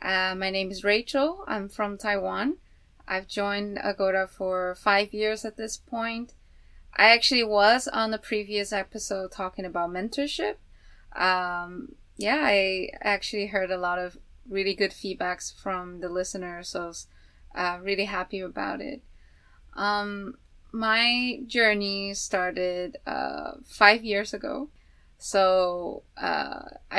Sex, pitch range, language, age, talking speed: female, 180-210 Hz, English, 20-39, 130 wpm